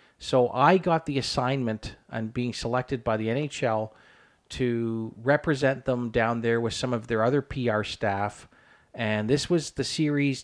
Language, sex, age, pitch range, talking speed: English, male, 40-59, 110-135 Hz, 160 wpm